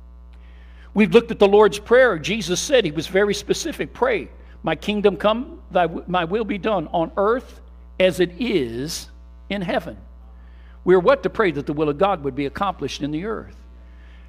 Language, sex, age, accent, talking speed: English, male, 60-79, American, 180 wpm